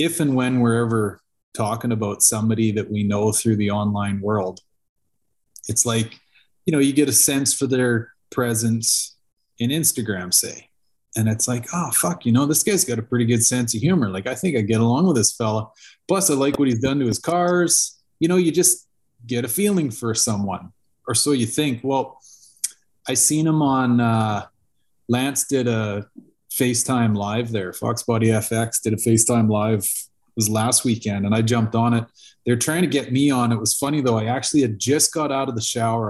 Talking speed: 205 wpm